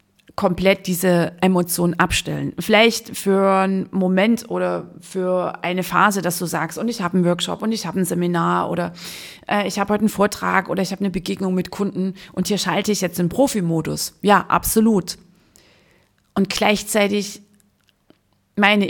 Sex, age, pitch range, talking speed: female, 30-49, 170-195 Hz, 160 wpm